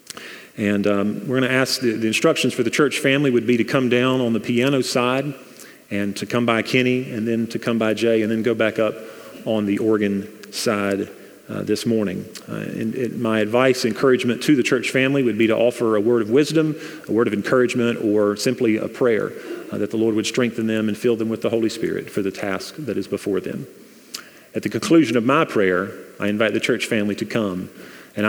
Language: English